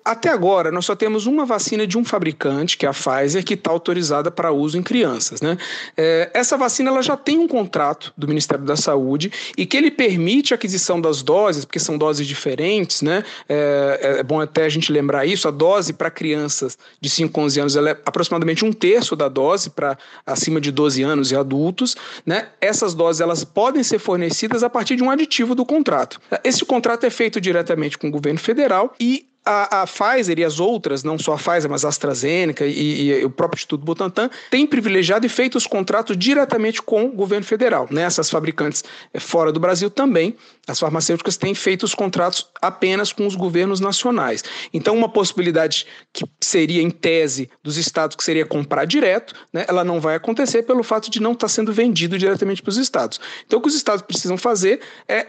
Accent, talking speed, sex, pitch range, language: Brazilian, 205 wpm, male, 155-230 Hz, Portuguese